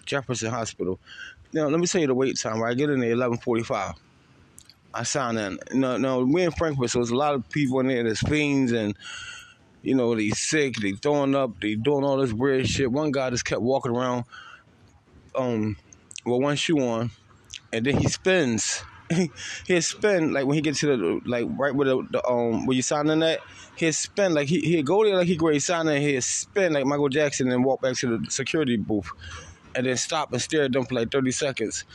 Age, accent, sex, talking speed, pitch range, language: 20-39, American, male, 220 wpm, 120-150 Hz, English